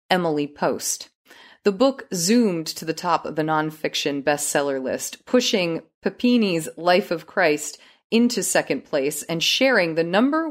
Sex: female